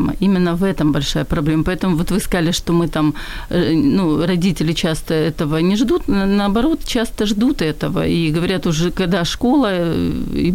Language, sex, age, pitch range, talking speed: Ukrainian, female, 40-59, 165-205 Hz, 160 wpm